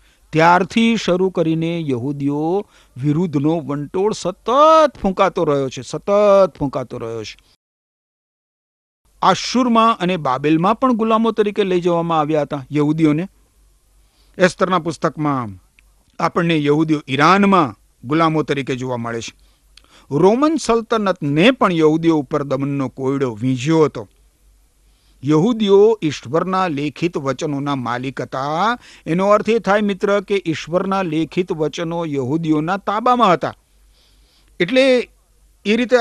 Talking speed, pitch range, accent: 110 wpm, 145-205 Hz, native